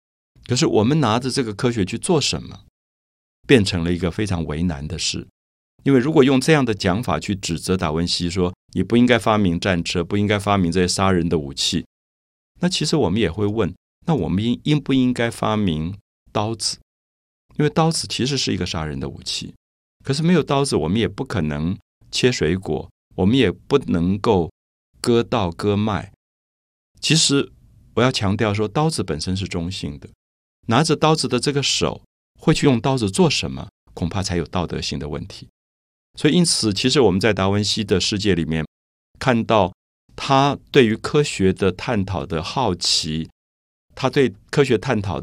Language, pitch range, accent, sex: Chinese, 85-120 Hz, native, male